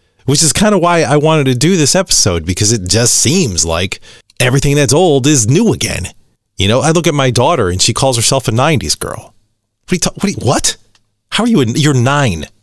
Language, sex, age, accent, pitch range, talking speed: English, male, 30-49, American, 105-150 Hz, 210 wpm